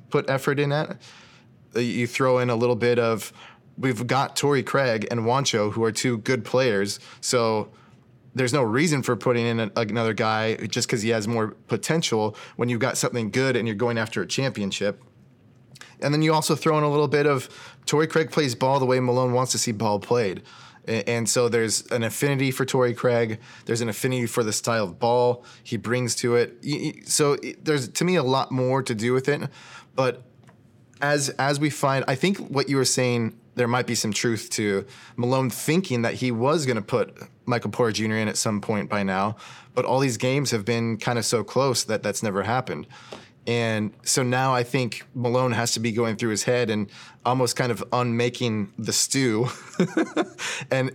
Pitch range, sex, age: 115-135 Hz, male, 20-39